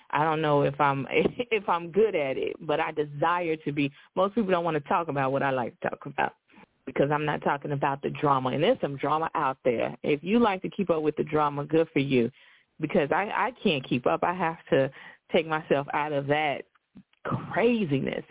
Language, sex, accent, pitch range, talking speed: English, female, American, 150-185 Hz, 225 wpm